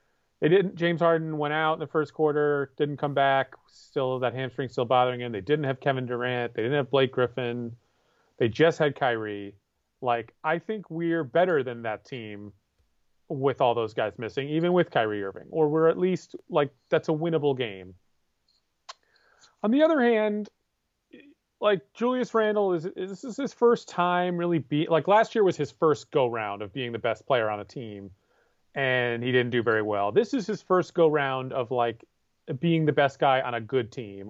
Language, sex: English, male